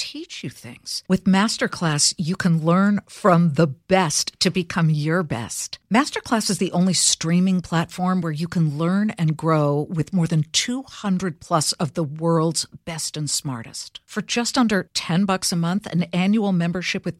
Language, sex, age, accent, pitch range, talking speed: English, female, 50-69, American, 160-205 Hz, 170 wpm